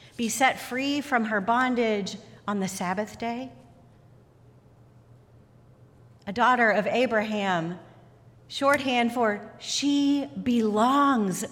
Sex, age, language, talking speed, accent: female, 40-59, English, 95 wpm, American